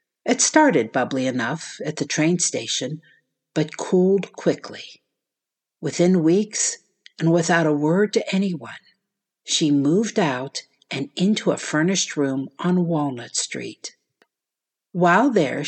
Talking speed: 125 wpm